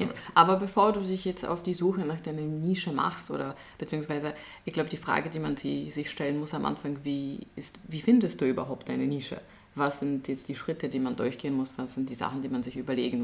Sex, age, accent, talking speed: female, 20-39, German, 225 wpm